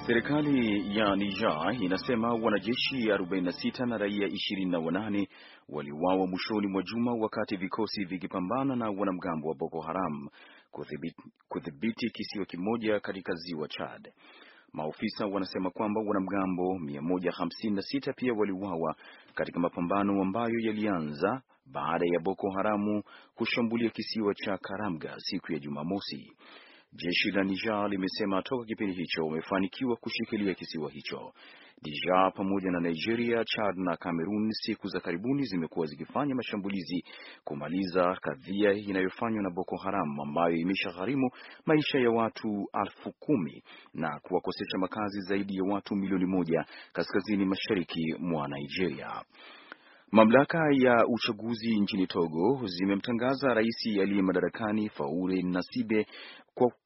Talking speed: 115 wpm